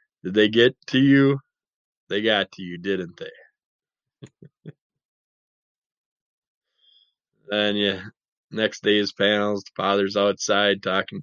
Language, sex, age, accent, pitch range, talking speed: English, male, 20-39, American, 95-130 Hz, 105 wpm